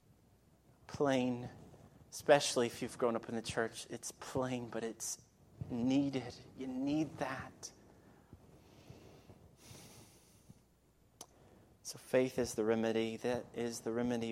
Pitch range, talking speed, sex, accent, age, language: 105-120 Hz, 110 wpm, male, American, 30-49, English